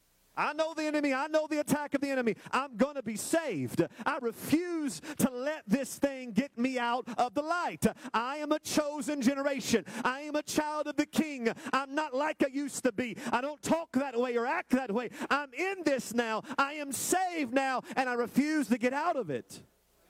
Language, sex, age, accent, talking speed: English, male, 40-59, American, 215 wpm